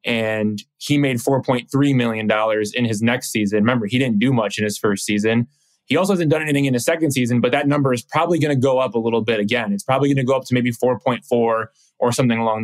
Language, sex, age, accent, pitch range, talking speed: English, male, 20-39, American, 115-135 Hz, 245 wpm